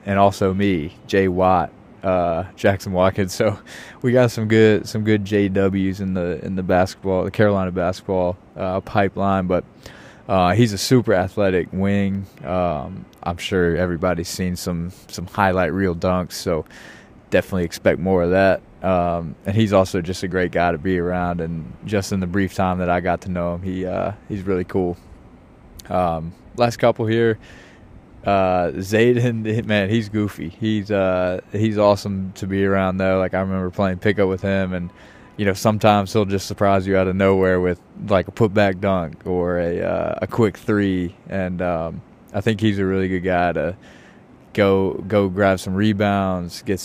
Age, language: 20-39, English